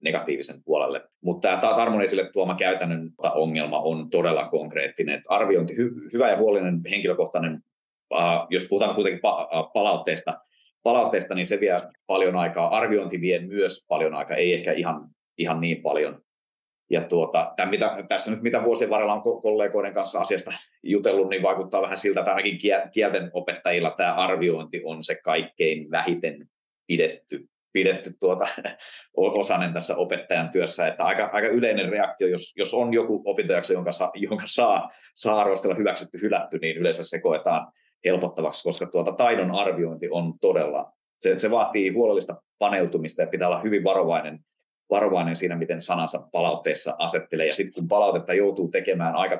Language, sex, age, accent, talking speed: Finnish, male, 30-49, native, 150 wpm